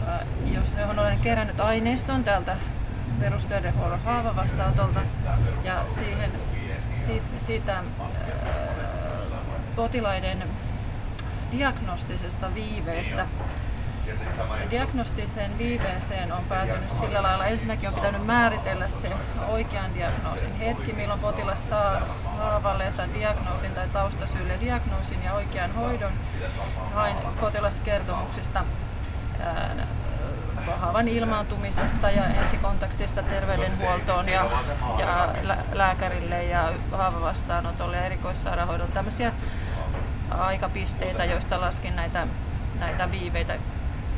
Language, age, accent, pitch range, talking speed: Finnish, 30-49, native, 95-115 Hz, 90 wpm